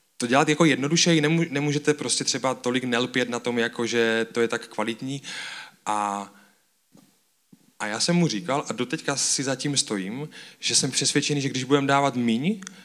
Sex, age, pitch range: male, 20-39, 115-140 Hz